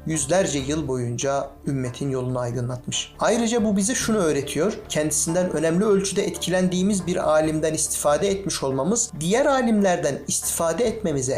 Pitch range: 145-185 Hz